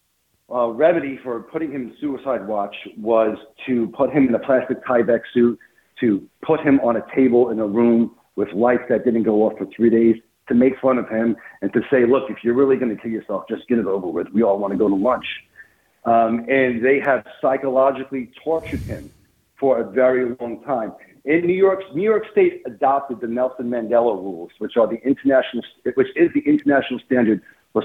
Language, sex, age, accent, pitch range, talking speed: English, male, 40-59, American, 115-135 Hz, 205 wpm